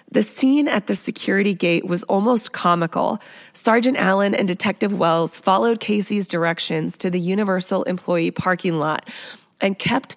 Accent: American